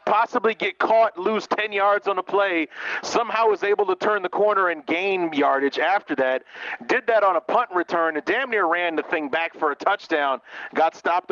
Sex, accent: male, American